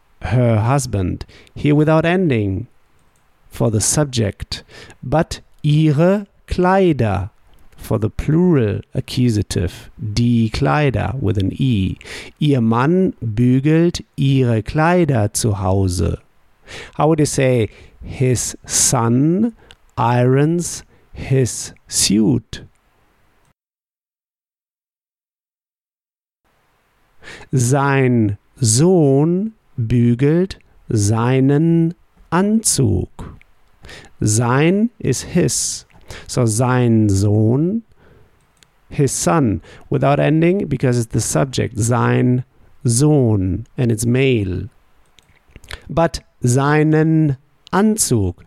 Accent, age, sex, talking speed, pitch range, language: German, 50-69, male, 80 wpm, 110-150 Hz, German